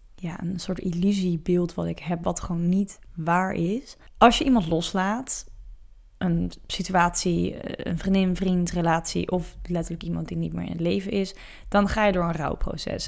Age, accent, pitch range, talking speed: 20-39, Dutch, 170-195 Hz, 170 wpm